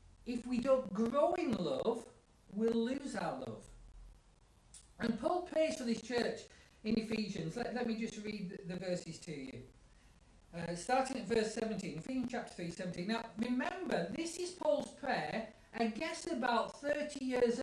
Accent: British